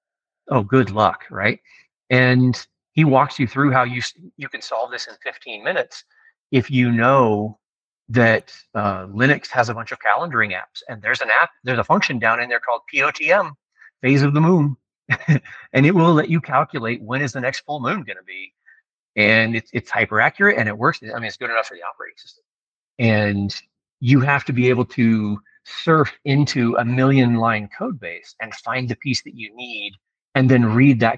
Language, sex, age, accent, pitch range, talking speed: English, male, 40-59, American, 105-135 Hz, 200 wpm